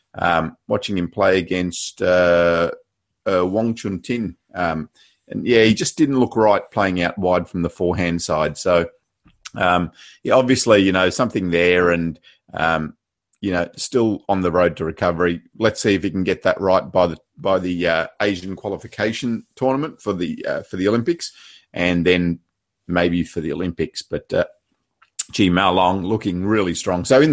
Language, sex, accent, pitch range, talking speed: English, male, Australian, 90-120 Hz, 180 wpm